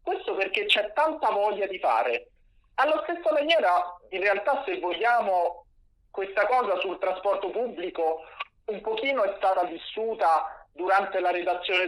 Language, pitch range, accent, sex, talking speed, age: Italian, 175-270 Hz, native, male, 135 wpm, 40-59